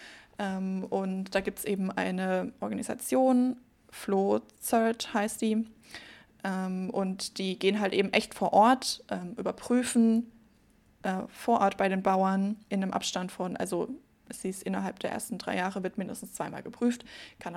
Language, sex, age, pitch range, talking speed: German, female, 20-39, 195-220 Hz, 145 wpm